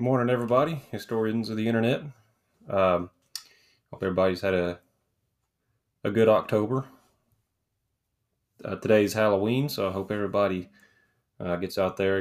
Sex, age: male, 20-39